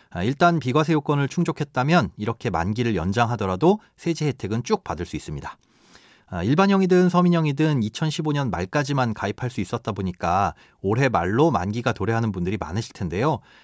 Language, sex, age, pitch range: Korean, male, 40-59, 100-155 Hz